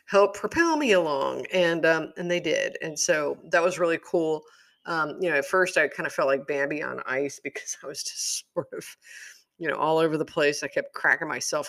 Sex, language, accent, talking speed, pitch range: female, English, American, 225 wpm, 140-210 Hz